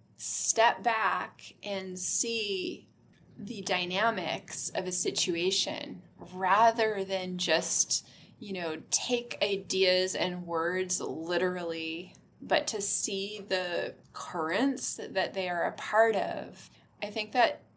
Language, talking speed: English, 115 wpm